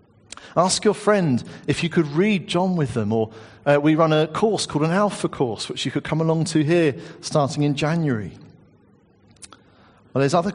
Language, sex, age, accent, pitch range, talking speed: English, male, 40-59, British, 125-160 Hz, 190 wpm